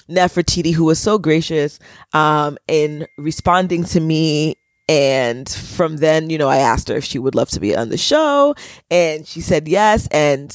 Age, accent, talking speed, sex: 20-39, American, 180 wpm, female